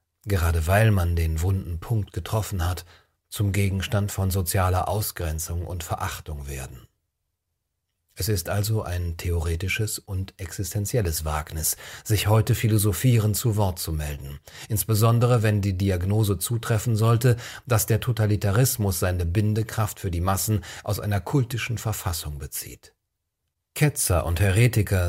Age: 40-59